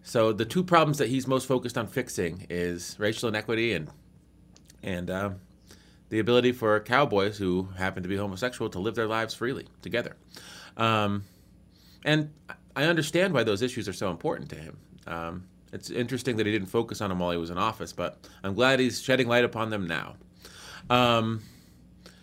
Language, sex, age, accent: English, male, 30-49, American